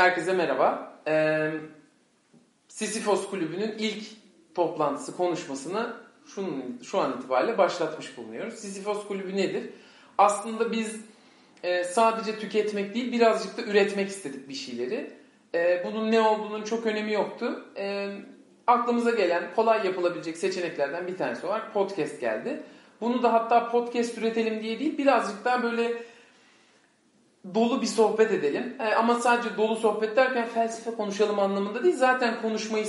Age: 40-59